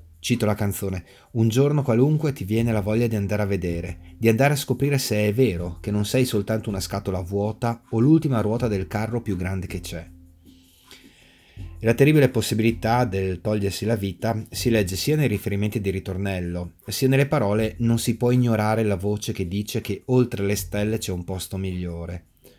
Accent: native